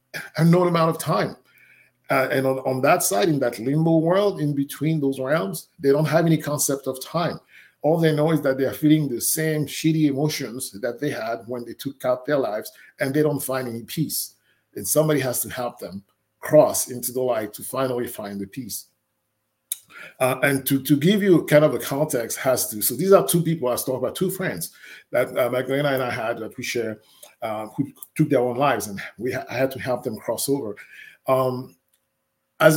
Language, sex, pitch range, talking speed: English, male, 125-155 Hz, 215 wpm